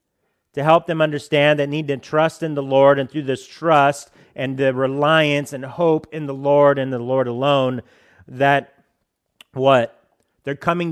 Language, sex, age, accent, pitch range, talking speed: English, male, 40-59, American, 125-155 Hz, 170 wpm